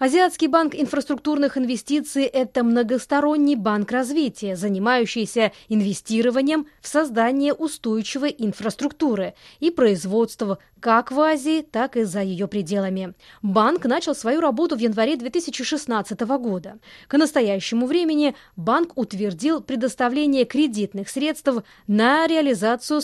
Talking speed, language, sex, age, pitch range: 110 wpm, Russian, female, 20-39, 200-275 Hz